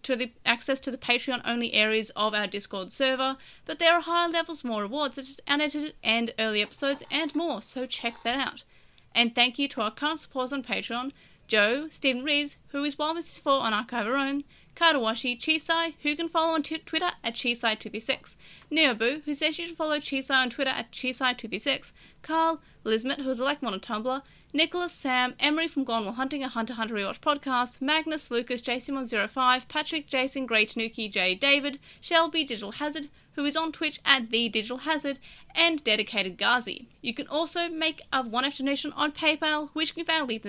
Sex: female